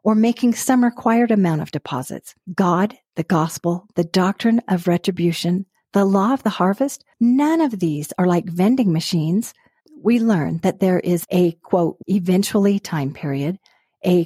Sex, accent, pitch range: female, American, 170-225 Hz